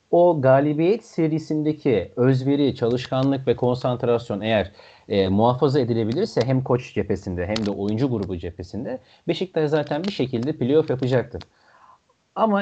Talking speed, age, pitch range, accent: 125 wpm, 40-59, 120-170 Hz, native